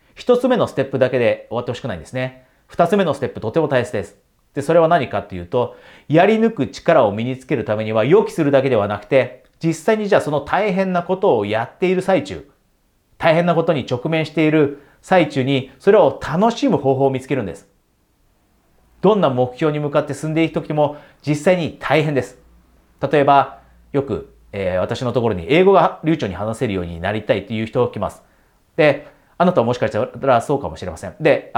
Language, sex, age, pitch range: Japanese, male, 30-49, 110-170 Hz